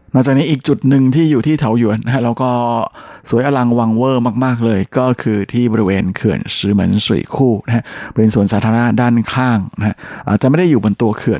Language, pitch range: Thai, 105-125 Hz